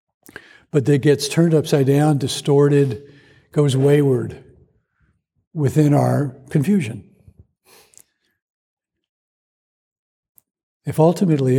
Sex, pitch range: male, 130-150 Hz